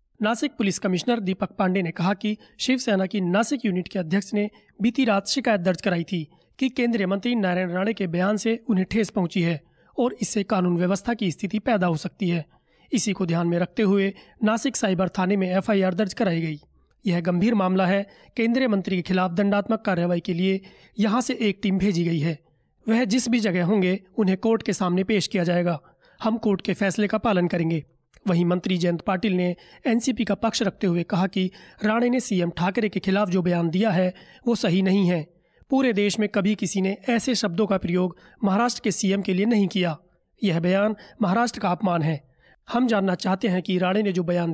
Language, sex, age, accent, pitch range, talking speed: Hindi, male, 30-49, native, 180-215 Hz, 205 wpm